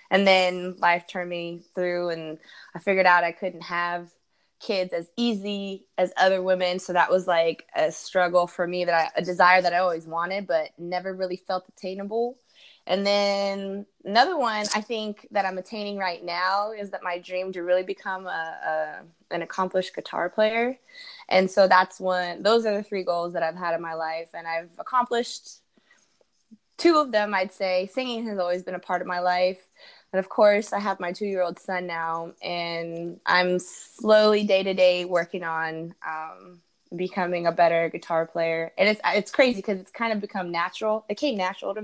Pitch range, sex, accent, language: 175-205 Hz, female, American, English